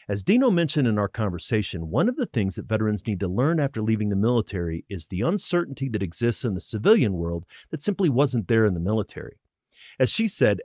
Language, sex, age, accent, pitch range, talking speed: English, male, 30-49, American, 100-135 Hz, 215 wpm